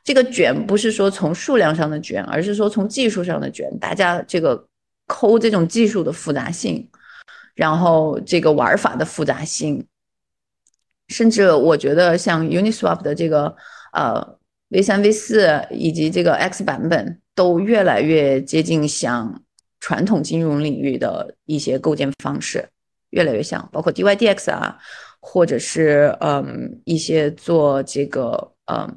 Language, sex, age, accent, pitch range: Chinese, female, 30-49, native, 150-215 Hz